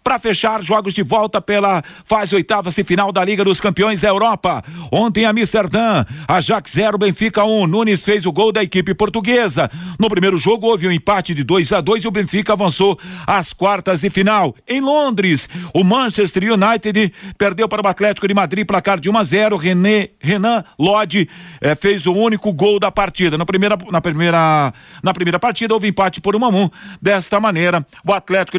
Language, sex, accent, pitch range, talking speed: Portuguese, male, Brazilian, 175-210 Hz, 195 wpm